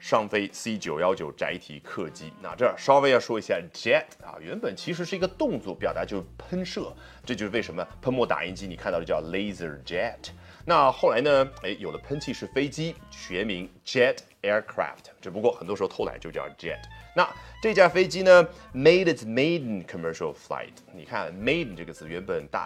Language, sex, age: Chinese, male, 30-49